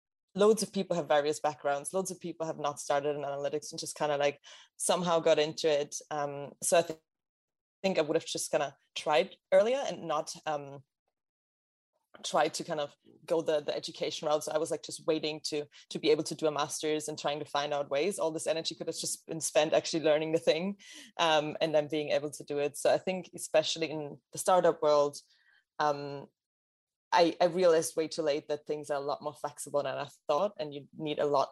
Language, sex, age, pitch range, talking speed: English, female, 20-39, 145-170 Hz, 220 wpm